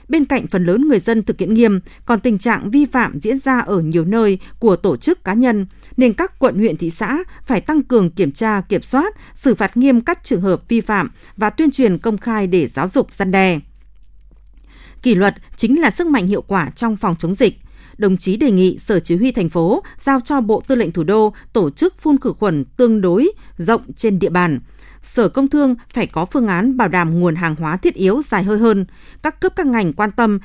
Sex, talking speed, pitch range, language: female, 230 wpm, 185-255 Hz, Vietnamese